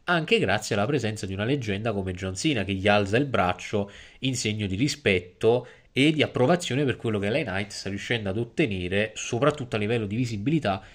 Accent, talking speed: native, 195 wpm